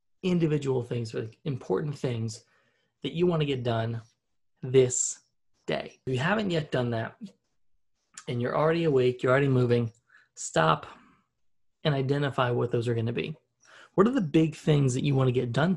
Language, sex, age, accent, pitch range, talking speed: English, male, 20-39, American, 120-150 Hz, 170 wpm